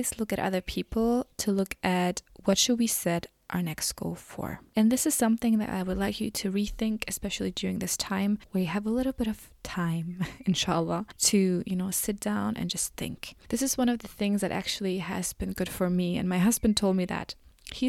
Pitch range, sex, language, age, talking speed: 190-230 Hz, female, English, 20-39, 225 wpm